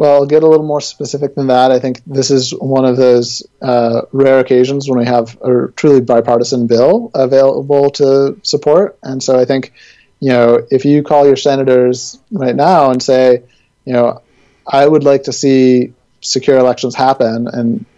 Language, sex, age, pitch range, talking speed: English, male, 30-49, 125-135 Hz, 185 wpm